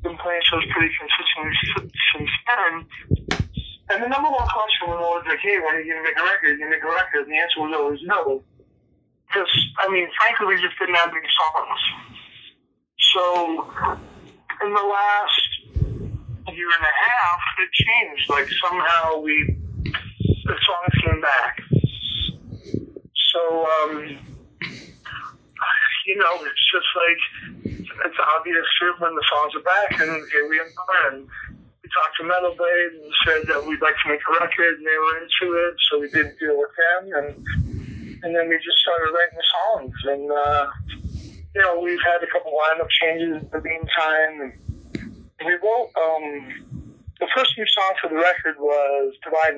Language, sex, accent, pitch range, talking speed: English, male, American, 145-175 Hz, 170 wpm